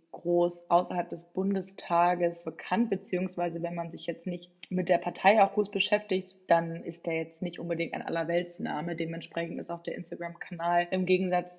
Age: 20-39